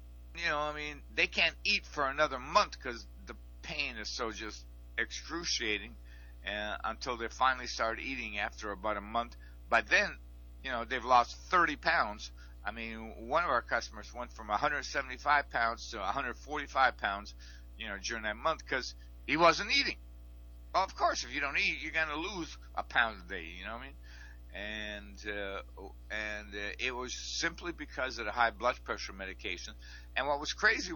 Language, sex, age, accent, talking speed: English, male, 60-79, American, 185 wpm